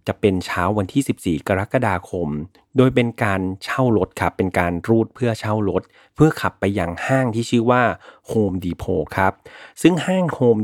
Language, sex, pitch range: Thai, male, 95-125 Hz